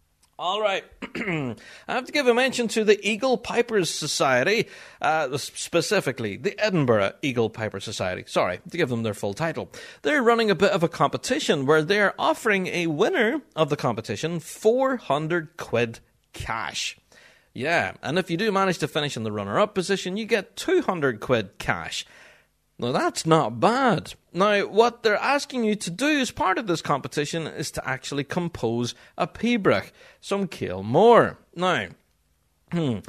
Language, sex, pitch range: English, male, 135-200 Hz